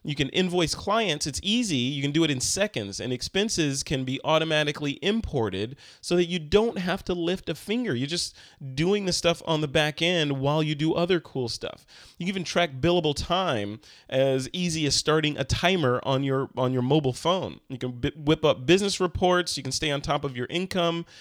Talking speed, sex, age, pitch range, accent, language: 210 wpm, male, 30-49, 130-175 Hz, American, English